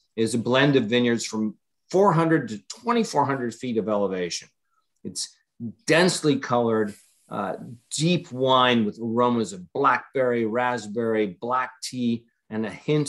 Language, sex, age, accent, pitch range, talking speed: English, male, 40-59, American, 110-135 Hz, 130 wpm